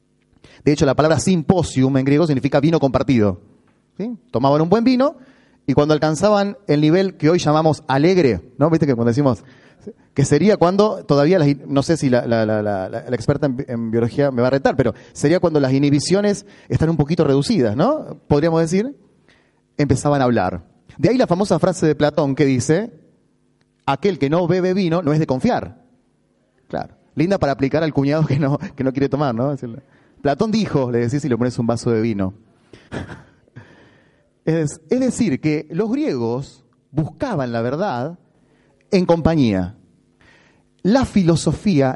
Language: Spanish